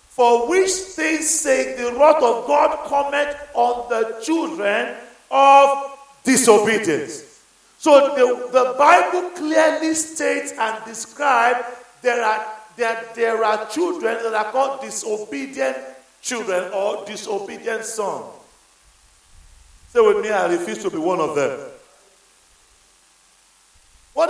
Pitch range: 180-275 Hz